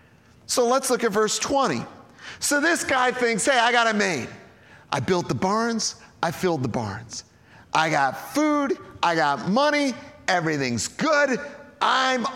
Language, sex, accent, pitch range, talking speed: English, male, American, 120-200 Hz, 155 wpm